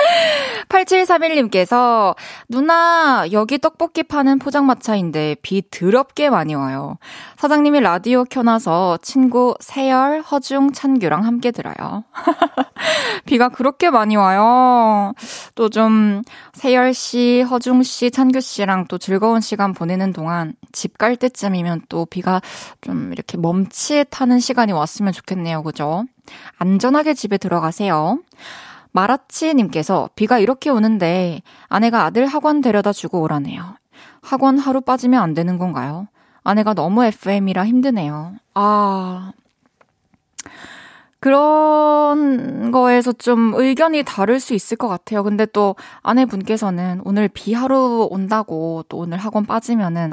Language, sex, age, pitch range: Korean, female, 20-39, 190-260 Hz